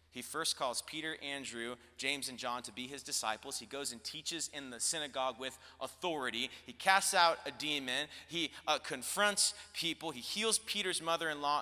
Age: 30-49